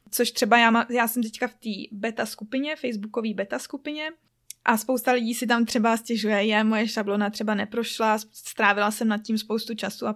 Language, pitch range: Czech, 210-240 Hz